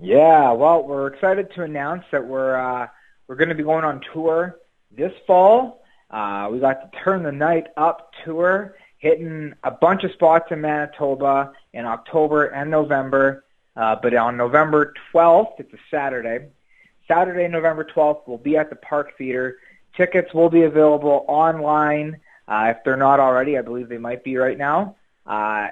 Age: 30-49